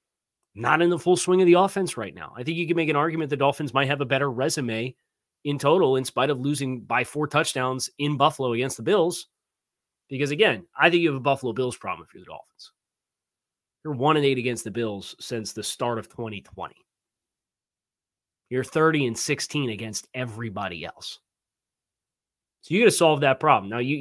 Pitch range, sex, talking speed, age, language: 120-150 Hz, male, 200 wpm, 30-49, English